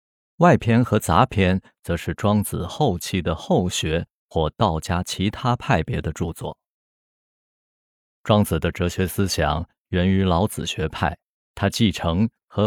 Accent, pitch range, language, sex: native, 80-110 Hz, Chinese, male